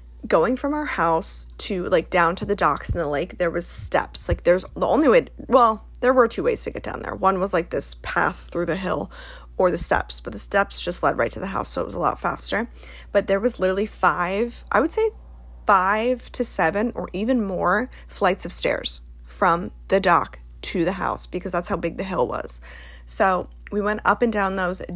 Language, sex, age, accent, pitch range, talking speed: English, female, 20-39, American, 165-225 Hz, 225 wpm